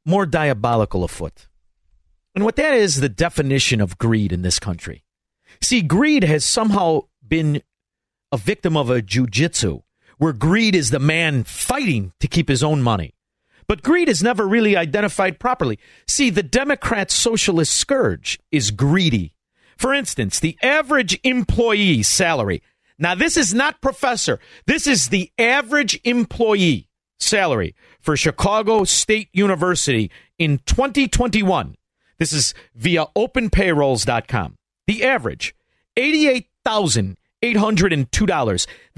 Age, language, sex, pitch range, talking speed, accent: 50-69, English, male, 140-220 Hz, 120 wpm, American